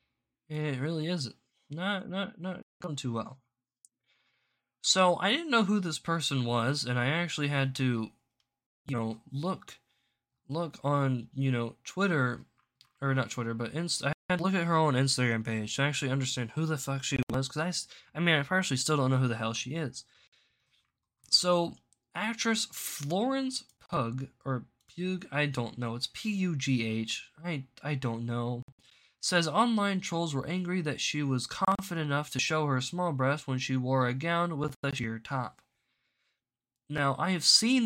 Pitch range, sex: 130-170 Hz, male